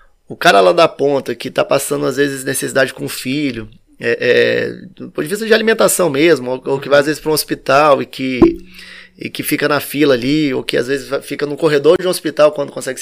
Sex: male